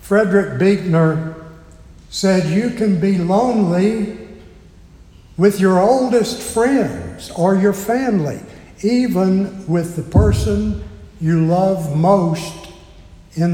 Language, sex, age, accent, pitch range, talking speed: English, male, 60-79, American, 115-190 Hz, 100 wpm